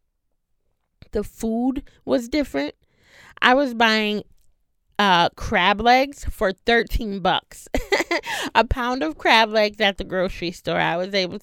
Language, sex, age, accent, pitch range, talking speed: English, female, 20-39, American, 185-270 Hz, 130 wpm